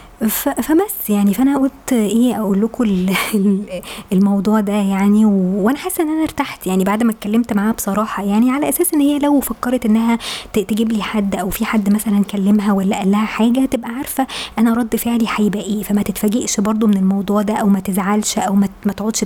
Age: 20-39